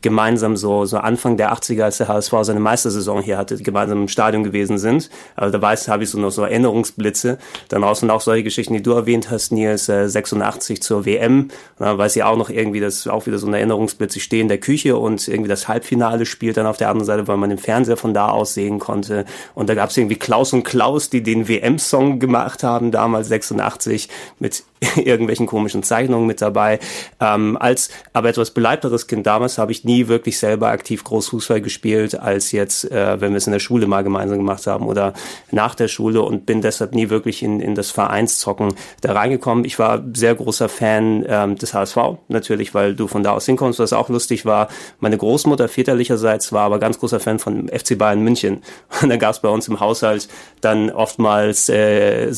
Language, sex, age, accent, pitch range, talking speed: German, male, 30-49, German, 105-115 Hz, 205 wpm